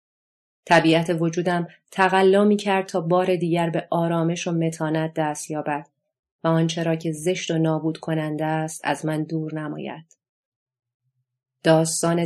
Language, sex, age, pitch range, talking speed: Persian, female, 30-49, 160-175 Hz, 130 wpm